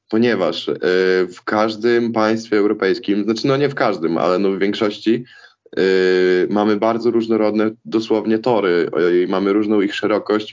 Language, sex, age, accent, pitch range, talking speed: Polish, male, 20-39, native, 105-120 Hz, 125 wpm